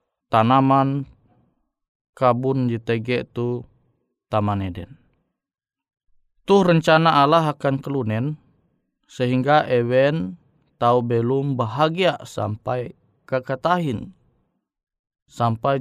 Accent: native